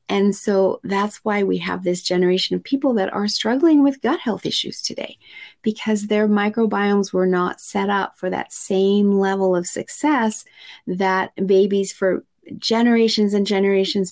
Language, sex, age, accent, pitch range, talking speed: English, female, 40-59, American, 175-205 Hz, 155 wpm